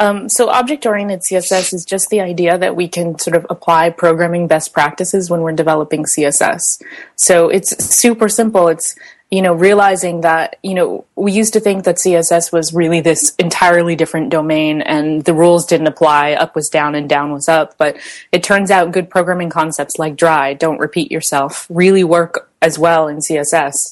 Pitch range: 155-185 Hz